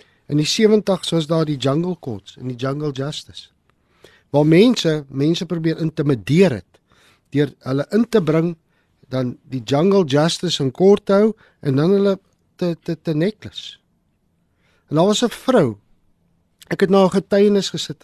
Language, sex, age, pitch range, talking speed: English, male, 50-69, 110-165 Hz, 155 wpm